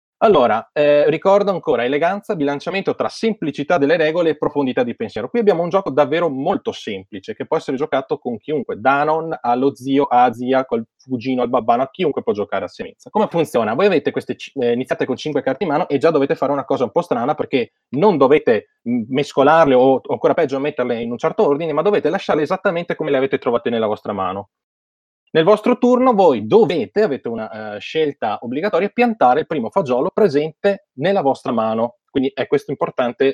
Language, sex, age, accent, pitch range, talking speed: Italian, male, 30-49, native, 125-200 Hz, 200 wpm